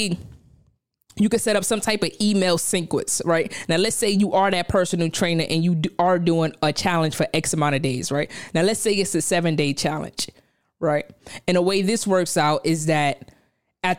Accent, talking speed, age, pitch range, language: American, 210 wpm, 20-39, 155-185 Hz, English